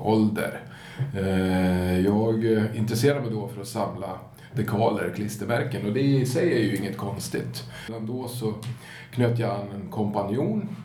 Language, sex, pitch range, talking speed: Swedish, male, 100-125 Hz, 135 wpm